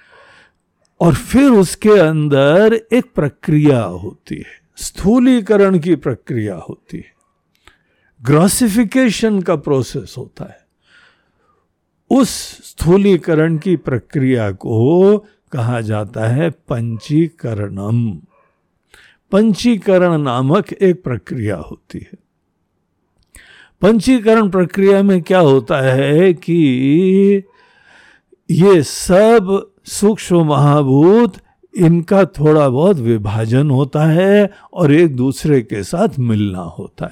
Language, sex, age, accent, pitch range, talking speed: Hindi, male, 60-79, native, 120-195 Hz, 90 wpm